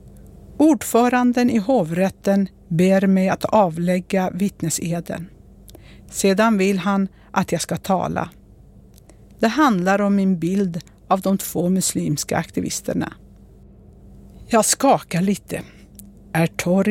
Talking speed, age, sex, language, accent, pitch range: 105 wpm, 60-79, female, Swedish, native, 175-220 Hz